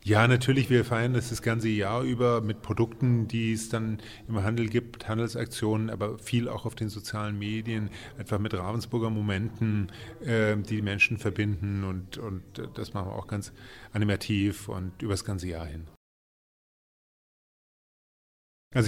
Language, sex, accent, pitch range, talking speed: German, male, German, 110-135 Hz, 155 wpm